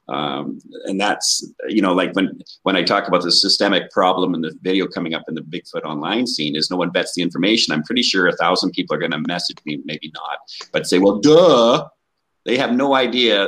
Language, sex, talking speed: English, male, 225 wpm